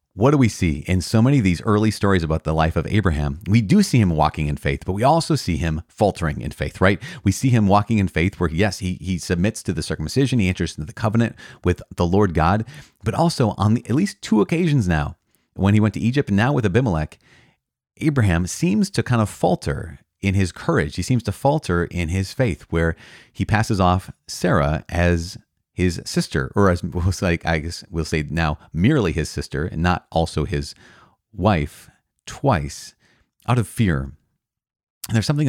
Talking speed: 205 wpm